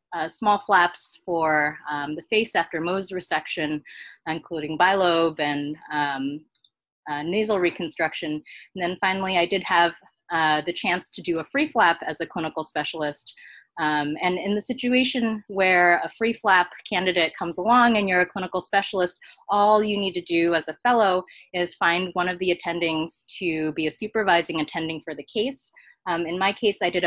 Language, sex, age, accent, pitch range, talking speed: English, female, 20-39, American, 155-190 Hz, 175 wpm